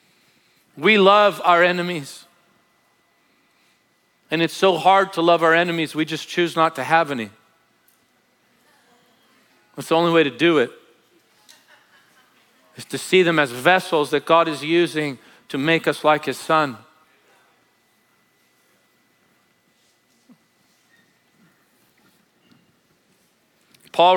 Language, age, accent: English, 40-59, American